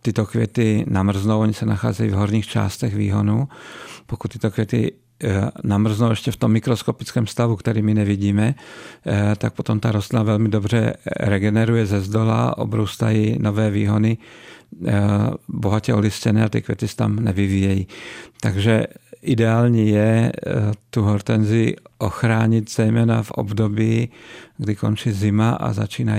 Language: Czech